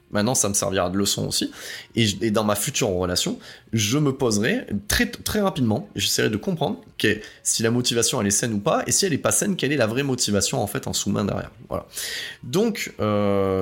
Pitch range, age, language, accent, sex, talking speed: 100-135 Hz, 20-39, French, French, male, 230 wpm